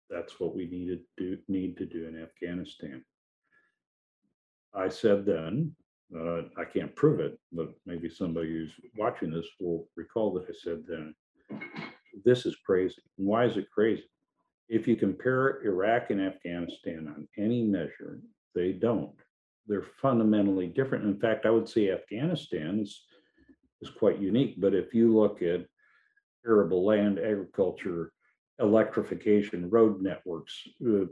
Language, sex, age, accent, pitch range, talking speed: English, male, 50-69, American, 90-115 Hz, 135 wpm